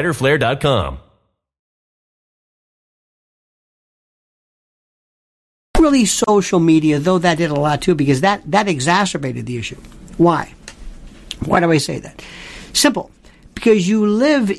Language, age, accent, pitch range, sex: English, 50-69, American, 150-200 Hz, male